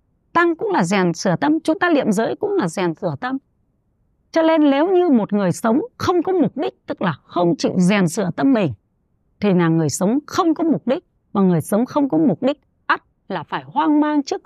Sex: female